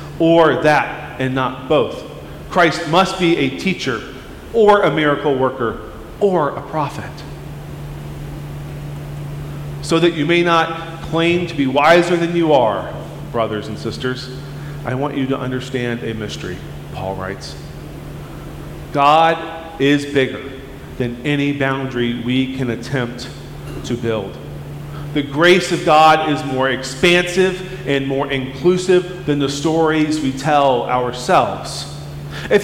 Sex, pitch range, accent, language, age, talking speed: male, 135-165 Hz, American, English, 40-59, 125 wpm